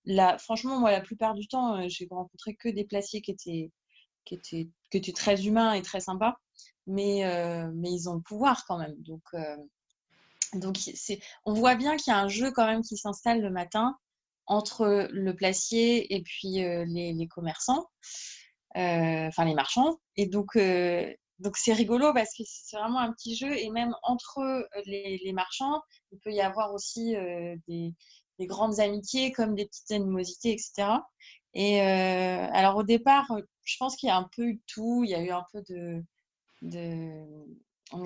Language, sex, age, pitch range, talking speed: French, female, 20-39, 180-225 Hz, 190 wpm